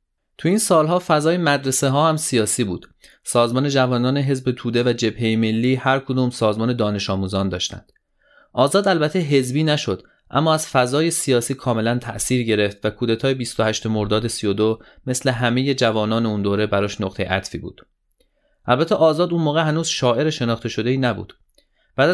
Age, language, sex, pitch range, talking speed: 30-49, Persian, male, 110-145 Hz, 160 wpm